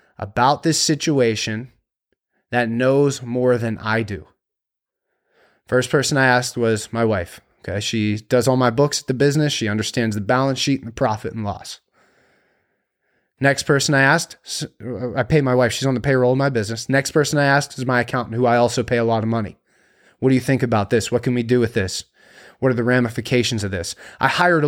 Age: 30-49